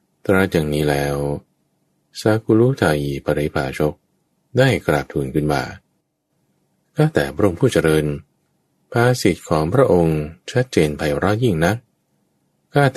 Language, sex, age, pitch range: Thai, male, 20-39, 75-115 Hz